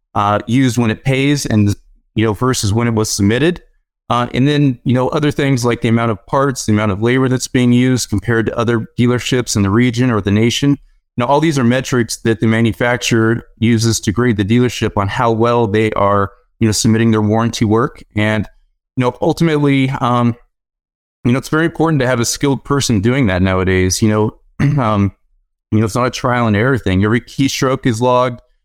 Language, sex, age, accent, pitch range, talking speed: English, male, 30-49, American, 110-130 Hz, 210 wpm